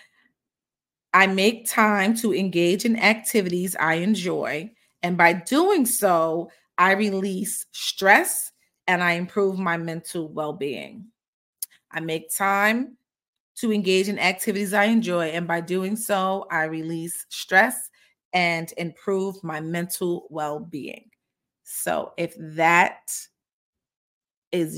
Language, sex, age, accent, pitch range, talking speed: English, female, 30-49, American, 170-210 Hz, 115 wpm